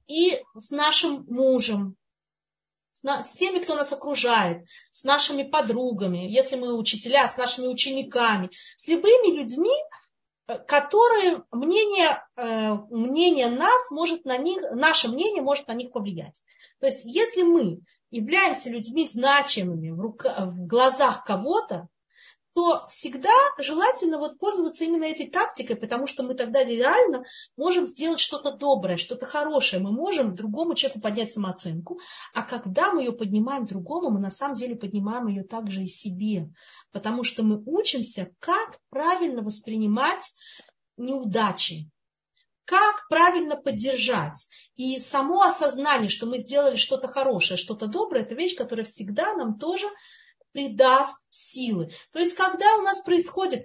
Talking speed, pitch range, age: 135 wpm, 230-335 Hz, 30-49